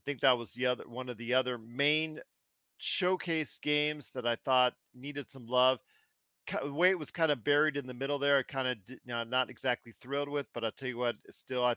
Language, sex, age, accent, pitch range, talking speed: English, male, 40-59, American, 115-140 Hz, 240 wpm